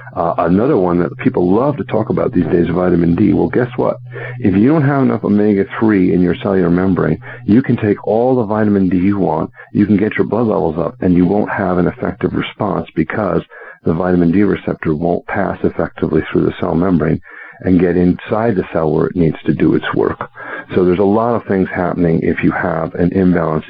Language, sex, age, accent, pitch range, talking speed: English, male, 50-69, American, 85-105 Hz, 220 wpm